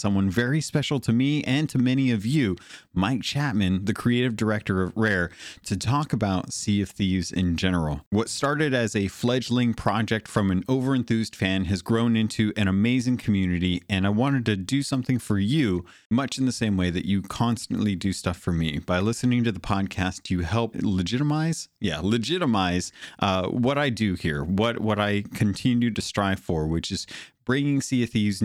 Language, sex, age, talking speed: English, male, 30-49, 190 wpm